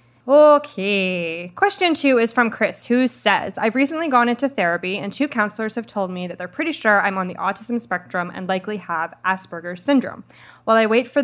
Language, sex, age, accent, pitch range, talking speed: English, female, 20-39, American, 185-230 Hz, 200 wpm